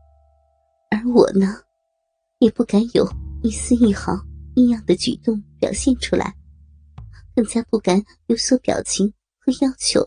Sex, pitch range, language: male, 200-260 Hz, Chinese